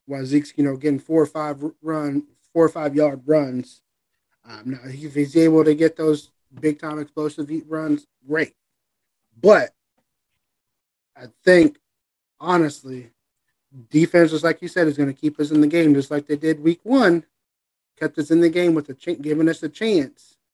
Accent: American